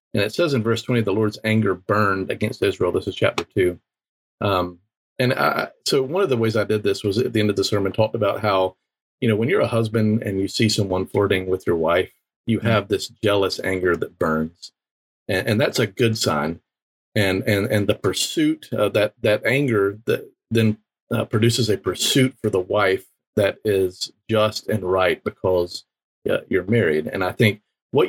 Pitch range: 95-115 Hz